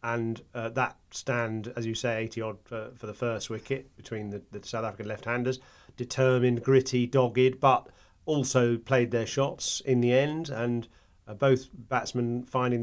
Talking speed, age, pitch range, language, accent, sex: 170 wpm, 40-59, 105-130 Hz, English, British, male